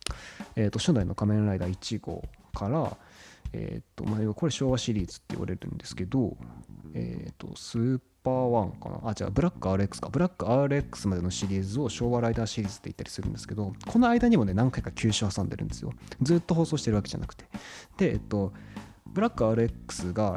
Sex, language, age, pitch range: male, Japanese, 20-39, 100-140 Hz